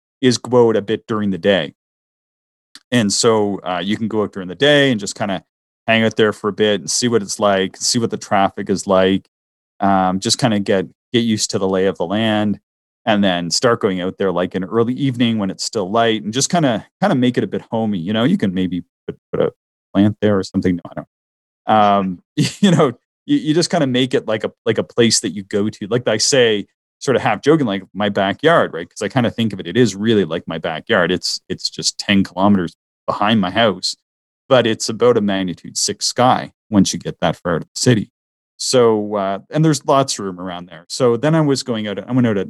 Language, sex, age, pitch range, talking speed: English, male, 30-49, 90-115 Hz, 250 wpm